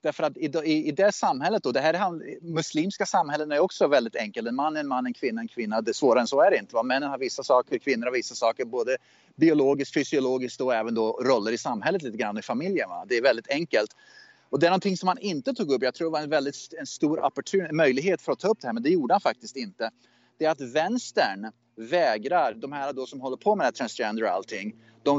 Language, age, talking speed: Swedish, 30-49, 260 wpm